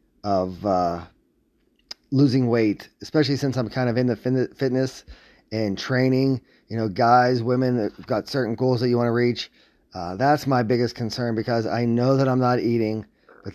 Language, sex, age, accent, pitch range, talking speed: English, male, 30-49, American, 105-130 Hz, 175 wpm